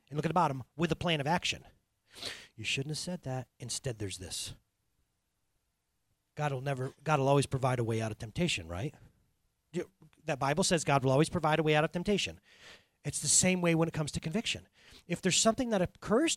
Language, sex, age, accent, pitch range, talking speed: English, male, 30-49, American, 150-215 Hz, 215 wpm